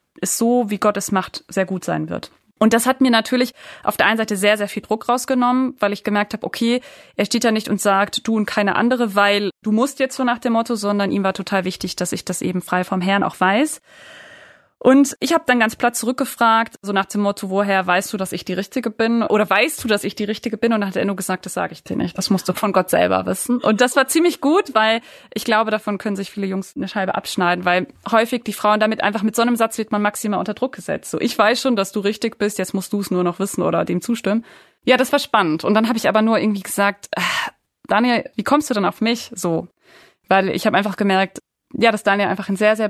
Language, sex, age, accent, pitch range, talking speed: German, female, 20-39, German, 195-235 Hz, 265 wpm